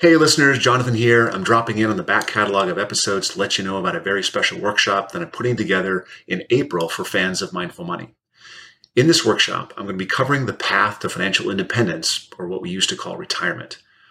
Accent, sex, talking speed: American, male, 220 wpm